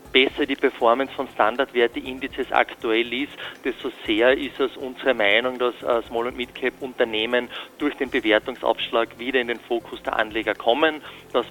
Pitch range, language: 120-140 Hz, German